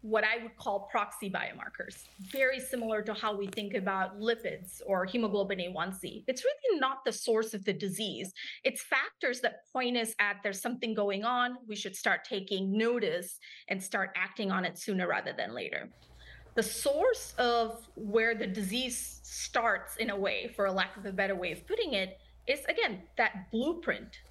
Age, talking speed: 30-49, 180 wpm